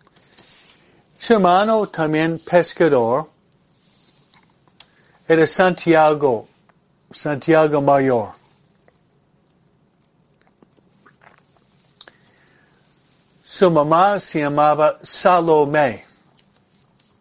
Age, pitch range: 60-79, 150-185 Hz